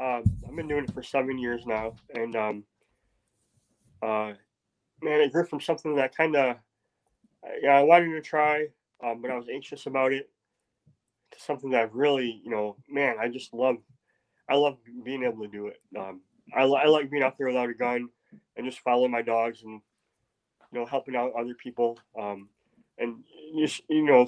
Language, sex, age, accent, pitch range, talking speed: English, male, 20-39, American, 115-135 Hz, 190 wpm